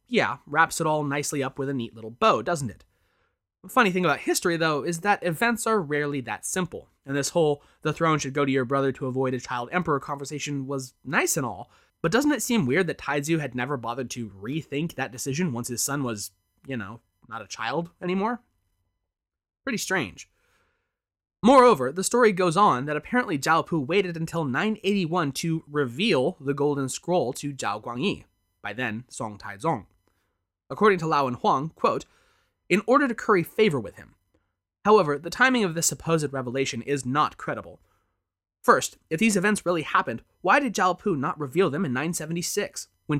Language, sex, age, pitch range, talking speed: English, male, 20-39, 125-185 Hz, 190 wpm